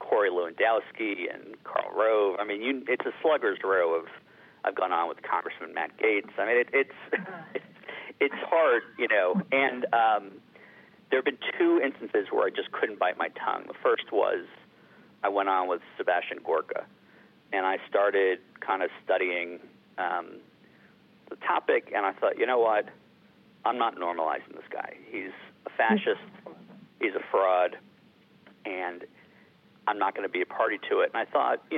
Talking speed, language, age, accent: 175 wpm, English, 50-69, American